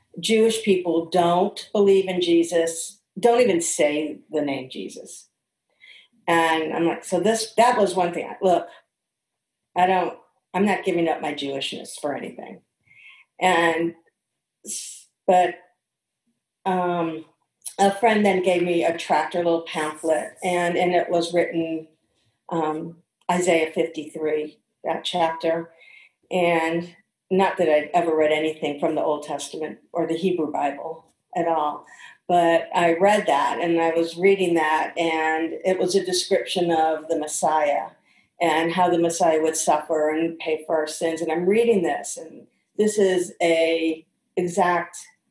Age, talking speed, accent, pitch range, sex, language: 50-69, 145 wpm, American, 160-185 Hz, female, English